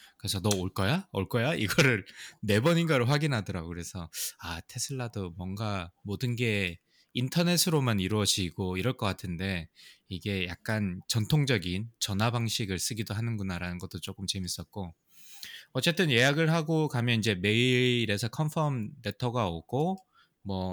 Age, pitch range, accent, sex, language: 20-39, 95-130 Hz, native, male, Korean